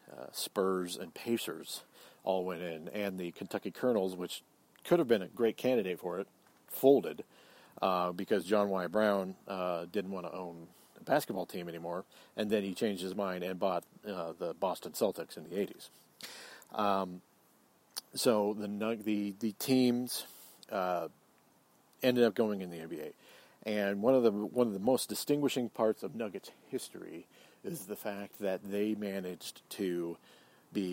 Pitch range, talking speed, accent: 95-110 Hz, 165 wpm, American